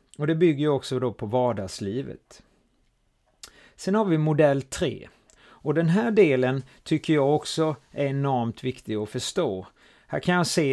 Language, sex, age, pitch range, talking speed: Swedish, male, 30-49, 115-150 Hz, 160 wpm